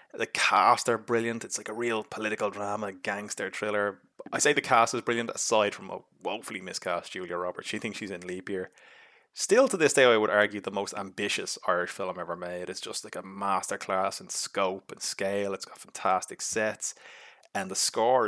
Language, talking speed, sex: English, 200 wpm, male